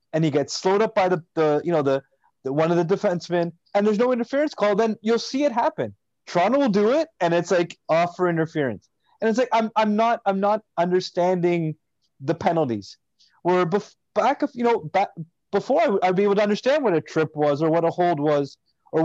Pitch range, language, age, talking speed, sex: 160-205 Hz, English, 20-39, 225 wpm, male